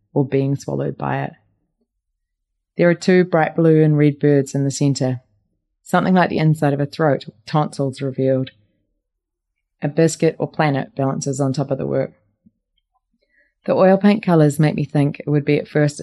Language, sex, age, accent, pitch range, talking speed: English, female, 30-49, Australian, 130-150 Hz, 175 wpm